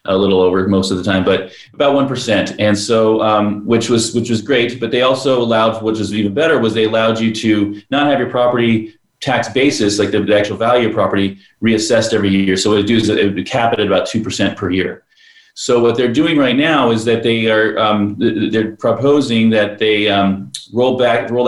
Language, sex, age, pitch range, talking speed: English, male, 30-49, 95-115 Hz, 230 wpm